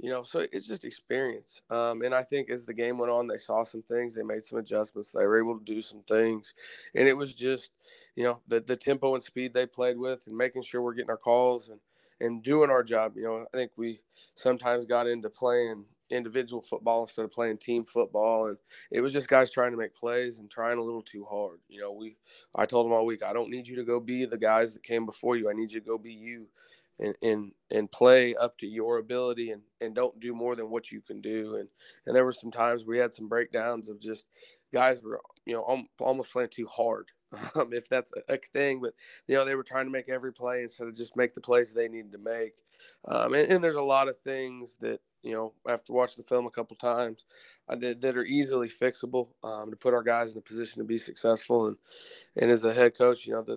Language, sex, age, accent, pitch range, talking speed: English, male, 20-39, American, 115-125 Hz, 250 wpm